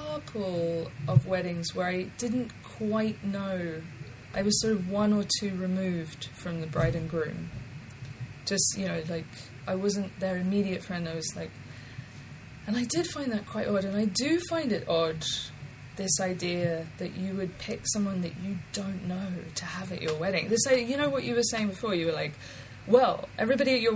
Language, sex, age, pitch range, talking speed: English, female, 20-39, 155-195 Hz, 195 wpm